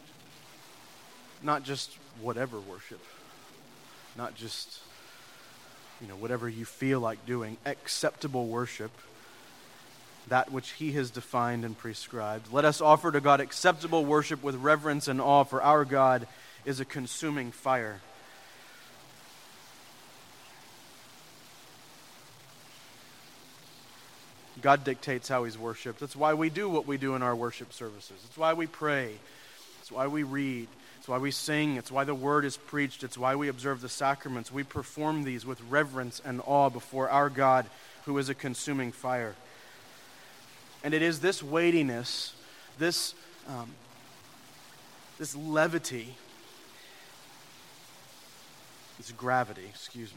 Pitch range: 125-145 Hz